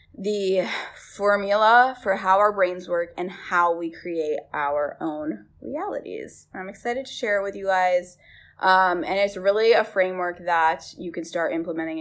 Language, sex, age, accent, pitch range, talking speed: English, female, 20-39, American, 170-210 Hz, 165 wpm